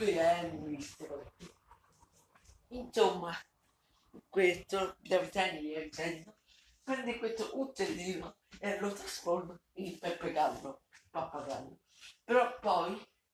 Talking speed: 100 wpm